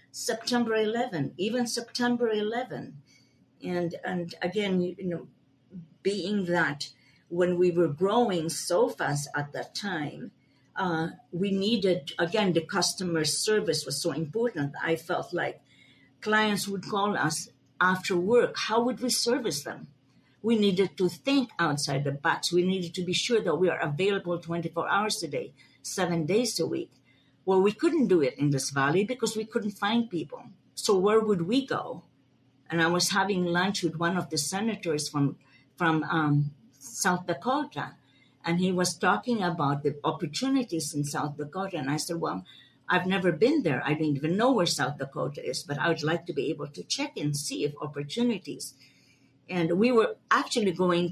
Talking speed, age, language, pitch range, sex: 175 wpm, 50-69, English, 150-200 Hz, female